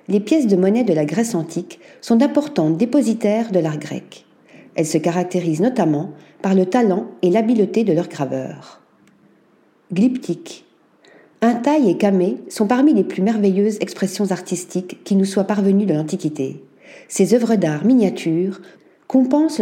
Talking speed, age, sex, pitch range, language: 145 wpm, 50-69, female, 175-235 Hz, French